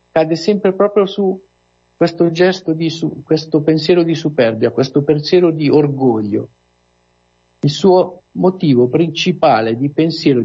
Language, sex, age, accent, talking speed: Italian, male, 50-69, native, 125 wpm